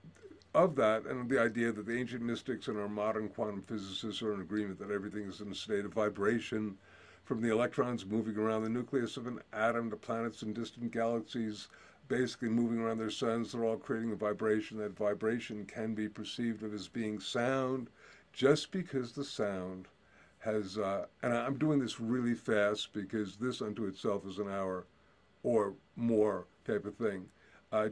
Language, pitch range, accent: English, 105-120 Hz, American